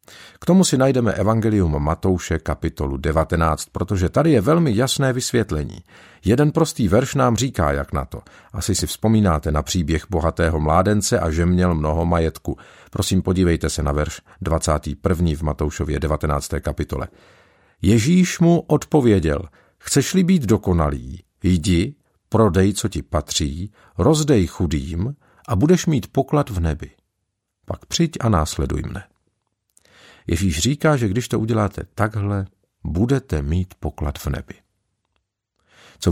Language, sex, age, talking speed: Czech, male, 50-69, 135 wpm